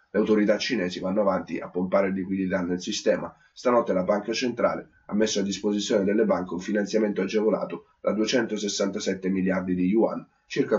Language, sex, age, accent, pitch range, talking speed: Italian, male, 30-49, native, 95-110 Hz, 160 wpm